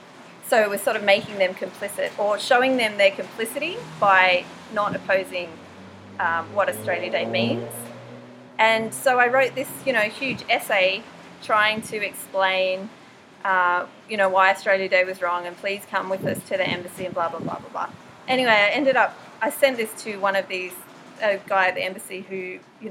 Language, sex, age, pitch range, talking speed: English, female, 30-49, 185-225 Hz, 190 wpm